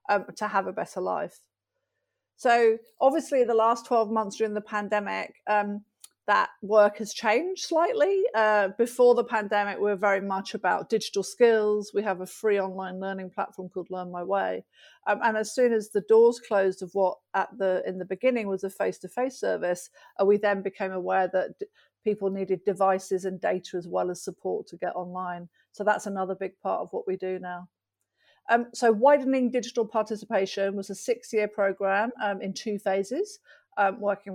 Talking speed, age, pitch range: 185 wpm, 50-69, 190-225 Hz